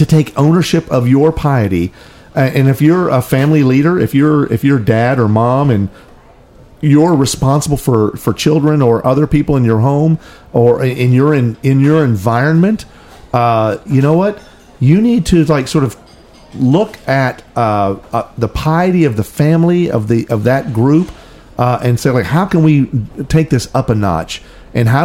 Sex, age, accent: male, 50-69, American